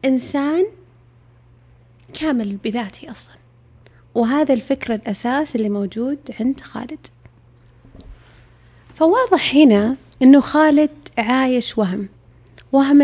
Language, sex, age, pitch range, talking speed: Arabic, female, 30-49, 195-270 Hz, 85 wpm